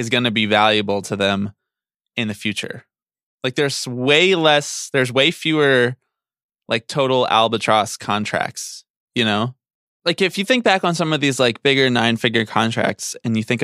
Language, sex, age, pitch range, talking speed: English, male, 20-39, 105-135 Hz, 170 wpm